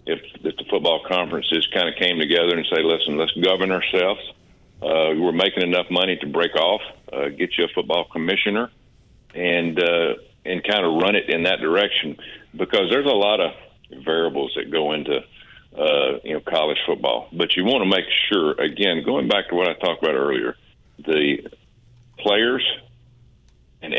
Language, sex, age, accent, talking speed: English, male, 50-69, American, 180 wpm